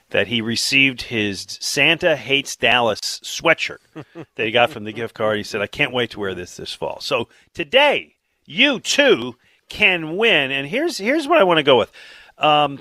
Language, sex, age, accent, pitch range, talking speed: English, male, 40-59, American, 115-150 Hz, 190 wpm